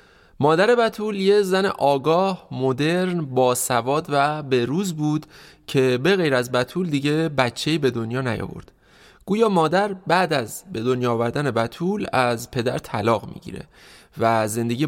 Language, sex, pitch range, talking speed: Persian, male, 120-165 Hz, 145 wpm